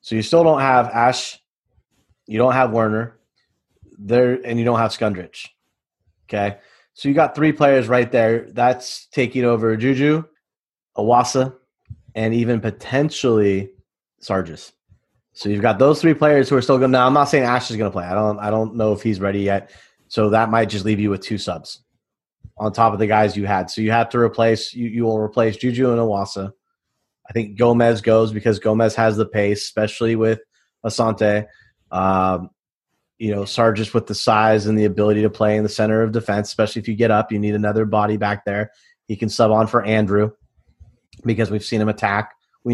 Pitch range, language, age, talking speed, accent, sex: 105-120 Hz, English, 30-49, 195 wpm, American, male